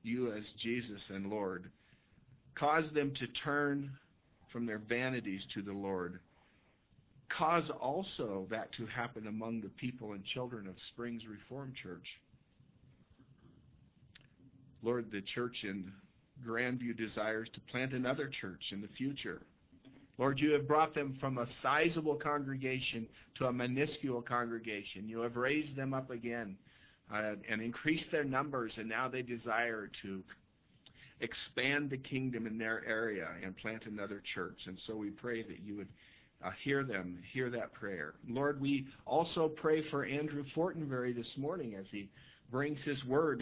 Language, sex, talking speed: English, male, 150 wpm